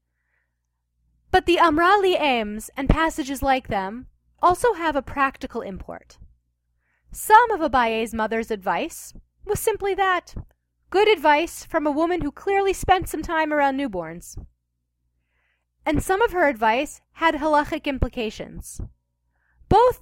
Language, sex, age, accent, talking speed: English, female, 30-49, American, 125 wpm